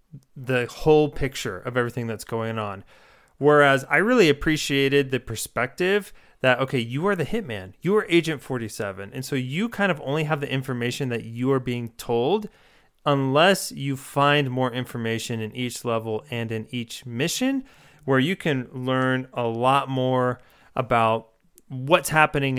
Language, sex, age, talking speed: English, male, 30-49, 160 wpm